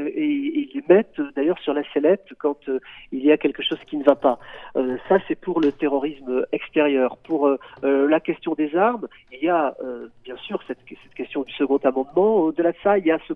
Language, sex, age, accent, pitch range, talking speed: French, male, 40-59, French, 125-165 Hz, 230 wpm